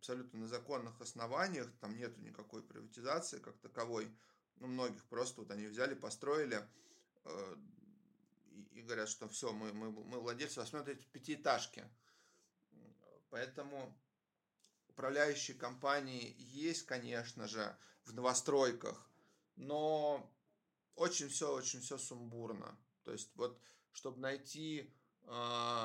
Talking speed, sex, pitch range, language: 115 wpm, male, 115-140 Hz, Russian